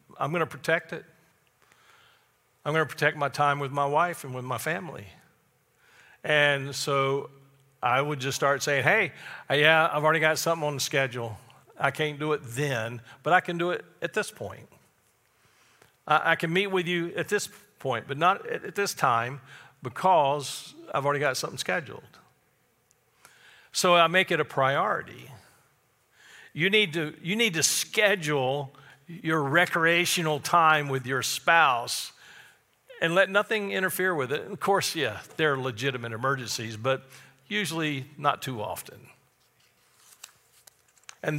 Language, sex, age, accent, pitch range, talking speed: English, male, 50-69, American, 135-170 Hz, 155 wpm